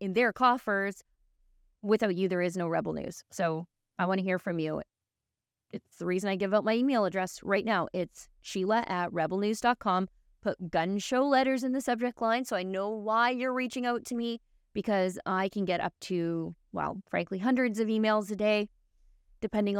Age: 30-49